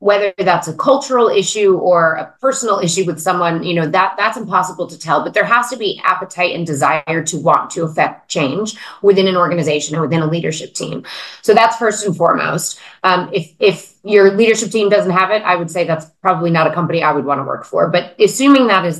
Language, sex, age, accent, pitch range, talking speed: English, female, 30-49, American, 175-215 Hz, 225 wpm